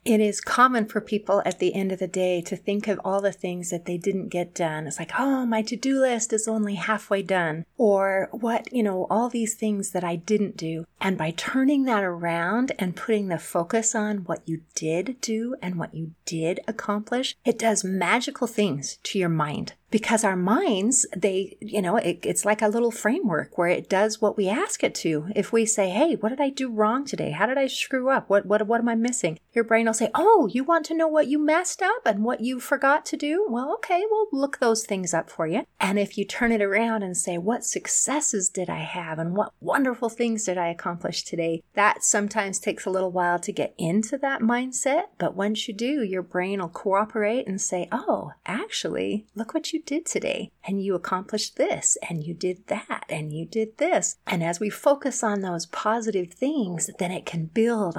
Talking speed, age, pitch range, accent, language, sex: 215 wpm, 40-59, 180-235 Hz, American, English, female